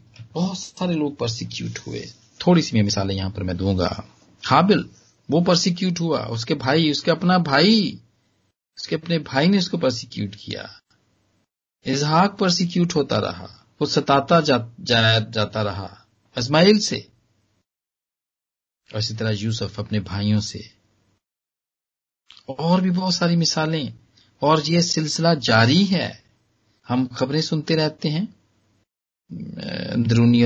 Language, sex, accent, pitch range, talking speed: Hindi, male, native, 110-160 Hz, 120 wpm